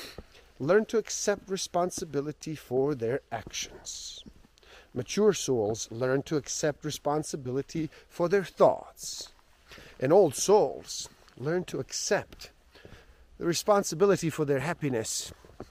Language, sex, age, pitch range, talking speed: English, male, 50-69, 115-175 Hz, 105 wpm